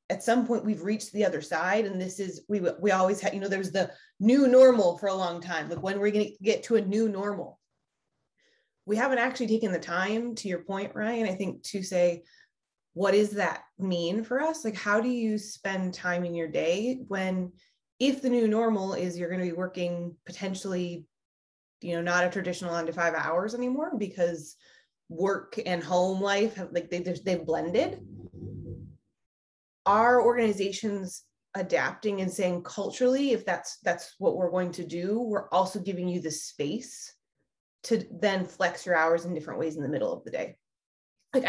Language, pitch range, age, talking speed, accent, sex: English, 180-220 Hz, 20-39, 190 wpm, American, female